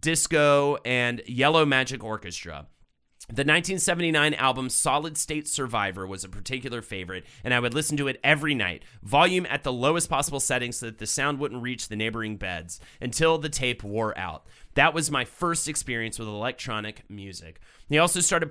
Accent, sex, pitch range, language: American, male, 115-160 Hz, English